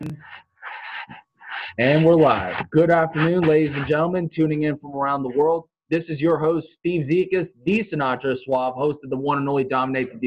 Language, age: English, 20-39